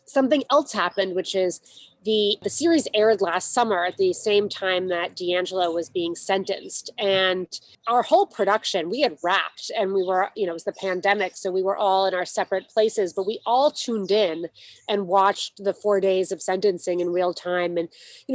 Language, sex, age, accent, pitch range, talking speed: English, female, 30-49, American, 185-220 Hz, 200 wpm